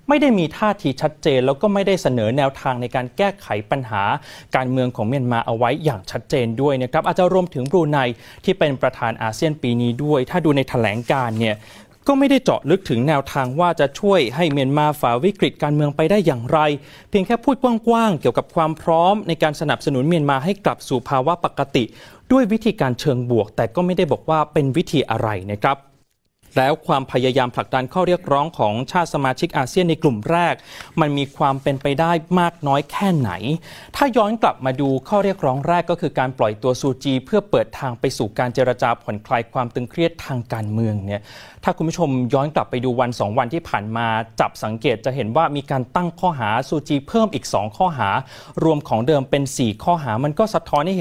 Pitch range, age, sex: 125-170 Hz, 20-39, male